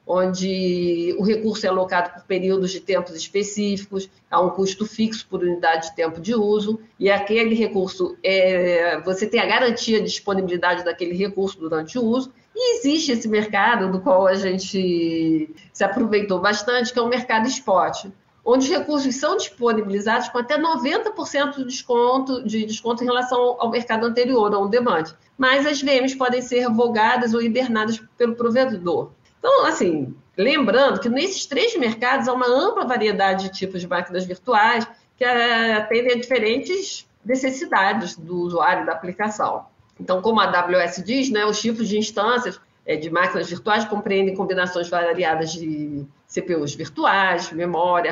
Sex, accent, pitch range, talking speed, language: female, Brazilian, 185-245 Hz, 160 wpm, Portuguese